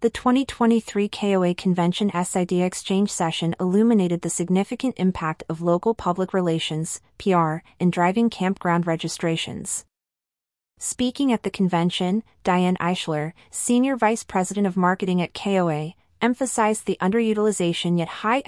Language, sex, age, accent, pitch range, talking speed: English, female, 30-49, American, 170-210 Hz, 125 wpm